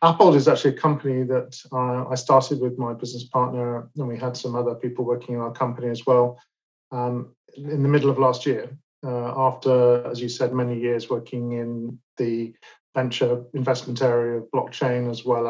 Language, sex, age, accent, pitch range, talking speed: English, male, 40-59, British, 120-130 Hz, 185 wpm